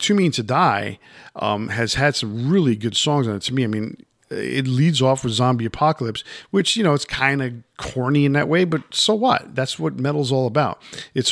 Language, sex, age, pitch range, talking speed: English, male, 50-69, 115-140 Hz, 225 wpm